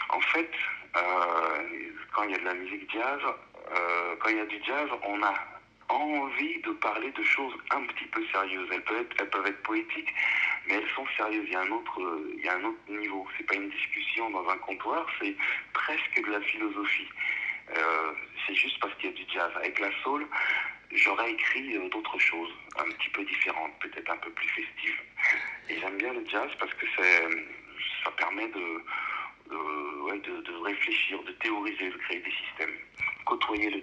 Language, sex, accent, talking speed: French, male, French, 200 wpm